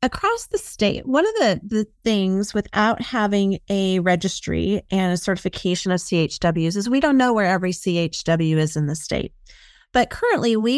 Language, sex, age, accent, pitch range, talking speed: English, female, 30-49, American, 180-215 Hz, 175 wpm